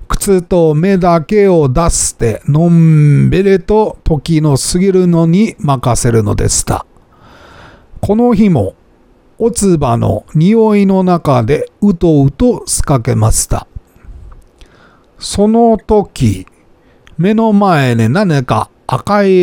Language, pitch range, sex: Japanese, 140-195 Hz, male